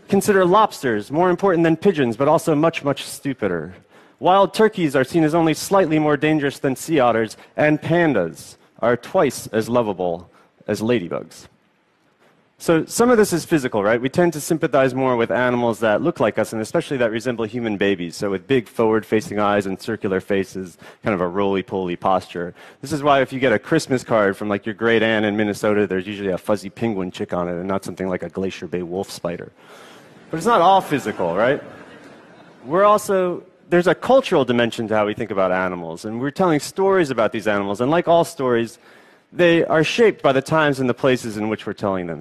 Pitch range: 105-160 Hz